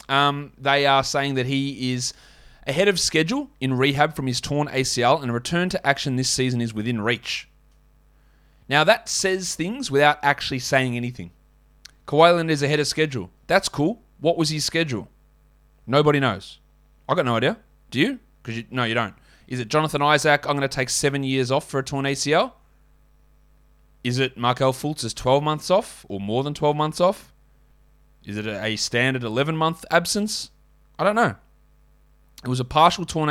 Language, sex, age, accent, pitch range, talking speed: English, male, 20-39, Australian, 130-165 Hz, 180 wpm